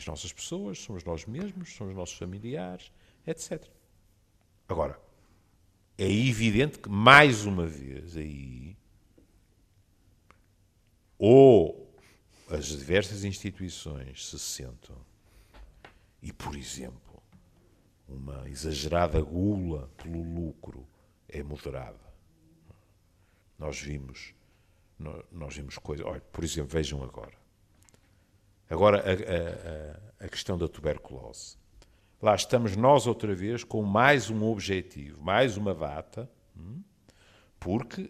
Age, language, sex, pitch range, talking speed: 60-79, Portuguese, male, 80-110 Hz, 100 wpm